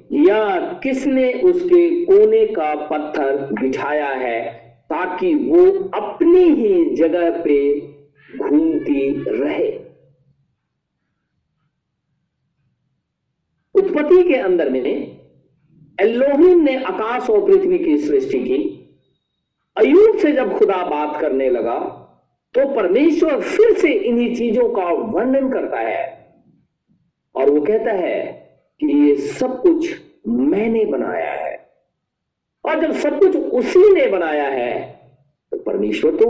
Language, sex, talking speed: Hindi, male, 110 wpm